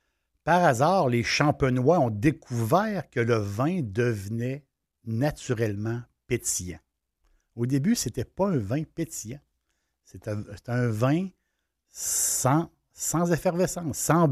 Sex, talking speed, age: male, 115 wpm, 60-79